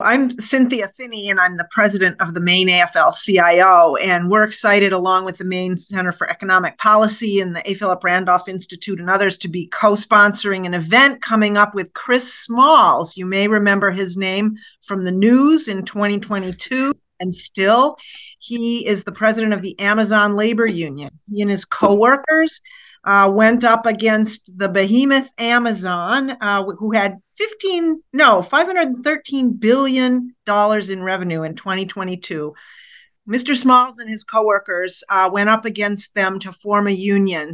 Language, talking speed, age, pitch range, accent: English, 155 wpm, 40-59, 185-225 Hz, American